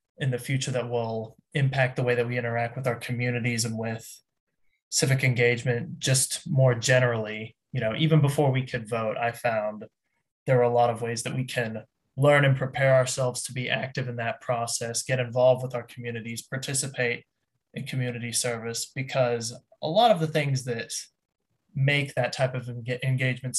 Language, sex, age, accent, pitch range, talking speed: English, male, 20-39, American, 120-135 Hz, 180 wpm